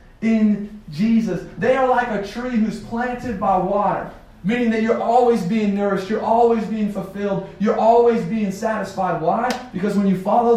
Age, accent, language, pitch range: 30-49, American, English, 195-230 Hz